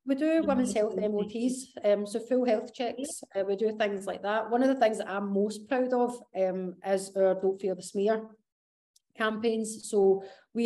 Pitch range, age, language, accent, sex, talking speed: 195-225 Hz, 30-49, English, British, female, 195 wpm